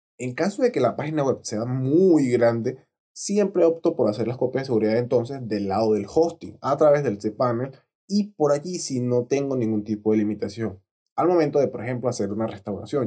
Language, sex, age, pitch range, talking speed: Spanish, male, 20-39, 110-150 Hz, 205 wpm